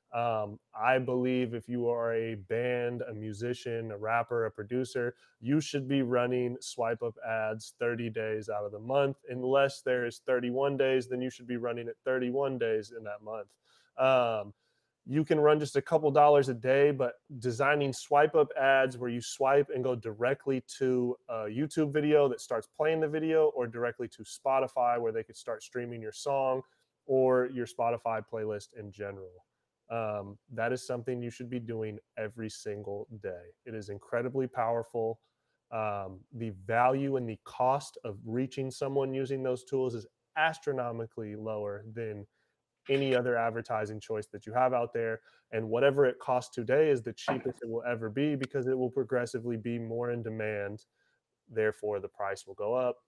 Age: 20-39